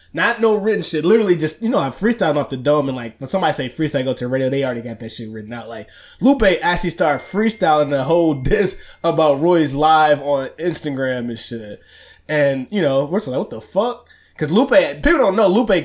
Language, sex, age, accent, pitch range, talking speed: English, male, 20-39, American, 125-165 Hz, 225 wpm